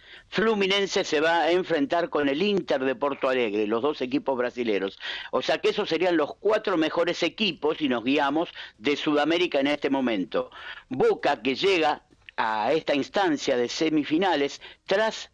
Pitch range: 145-210 Hz